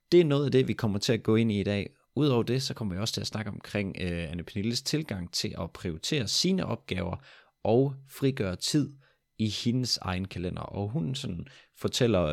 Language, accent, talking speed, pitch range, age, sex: Danish, native, 205 wpm, 85-115 Hz, 30-49, male